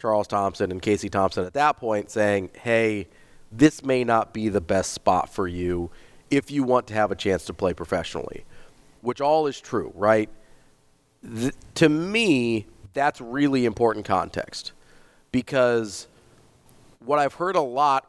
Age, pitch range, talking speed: 30-49, 105-140 Hz, 155 wpm